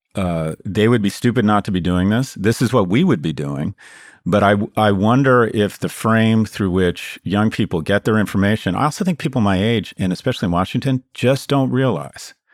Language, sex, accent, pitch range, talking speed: English, male, American, 90-130 Hz, 210 wpm